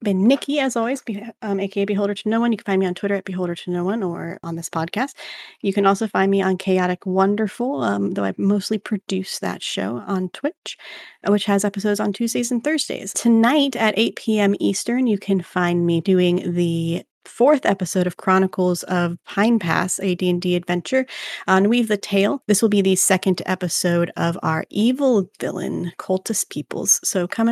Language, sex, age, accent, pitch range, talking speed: English, female, 30-49, American, 185-235 Hz, 190 wpm